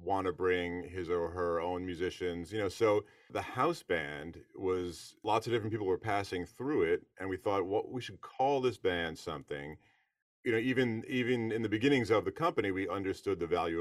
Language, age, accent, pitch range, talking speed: English, 40-59, American, 85-110 Hz, 210 wpm